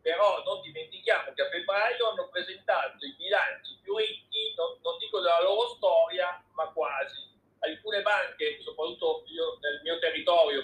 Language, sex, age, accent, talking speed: Italian, male, 50-69, native, 150 wpm